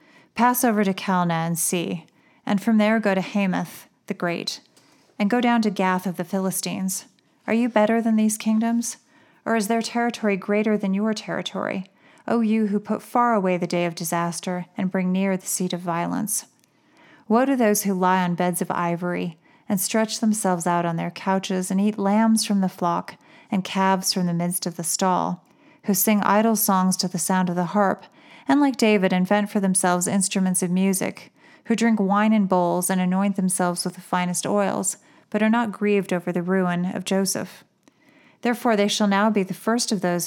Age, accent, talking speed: 30-49, American, 195 wpm